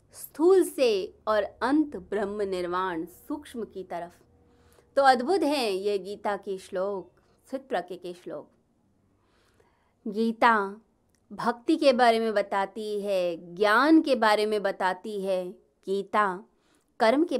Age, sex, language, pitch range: 30-49, female, Hindi, 195-255 Hz